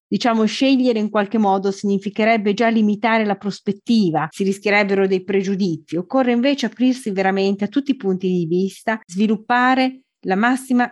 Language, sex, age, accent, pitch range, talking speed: Italian, female, 30-49, native, 185-230 Hz, 150 wpm